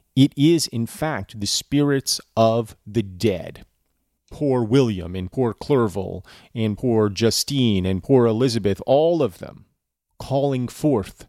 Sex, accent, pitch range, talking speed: male, American, 105-140 Hz, 135 wpm